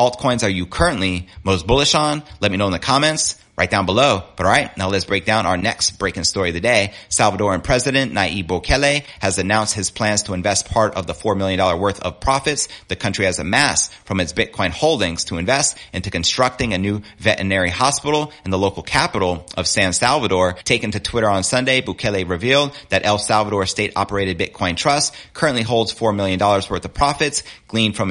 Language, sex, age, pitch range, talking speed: English, male, 30-49, 95-120 Hz, 205 wpm